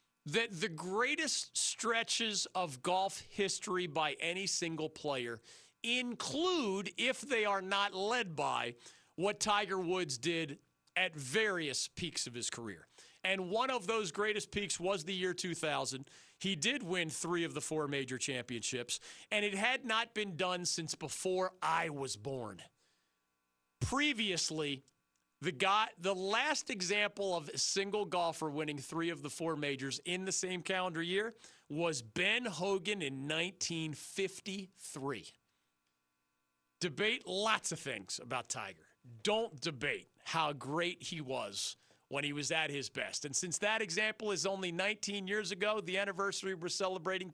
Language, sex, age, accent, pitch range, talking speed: English, male, 40-59, American, 145-200 Hz, 145 wpm